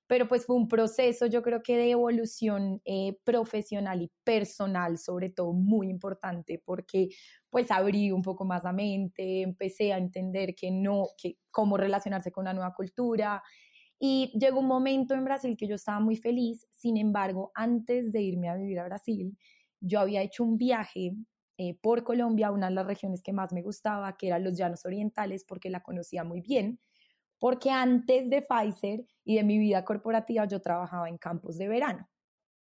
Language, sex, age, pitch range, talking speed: Spanish, female, 20-39, 190-230 Hz, 180 wpm